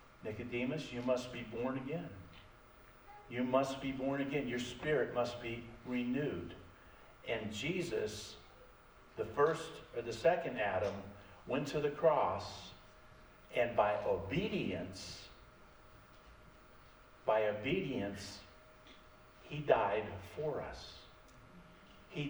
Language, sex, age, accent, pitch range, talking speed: English, male, 50-69, American, 110-145 Hz, 100 wpm